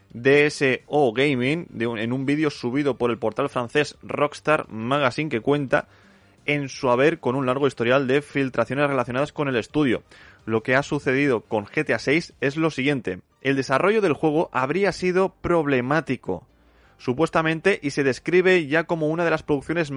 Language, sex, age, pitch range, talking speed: Spanish, male, 20-39, 125-150 Hz, 170 wpm